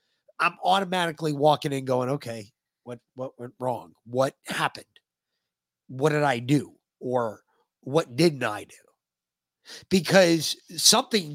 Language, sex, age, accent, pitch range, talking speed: English, male, 30-49, American, 115-160 Hz, 120 wpm